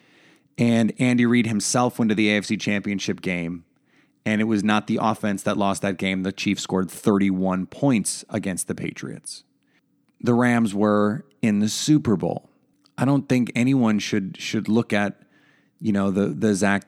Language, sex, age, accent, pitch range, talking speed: English, male, 30-49, American, 100-125 Hz, 170 wpm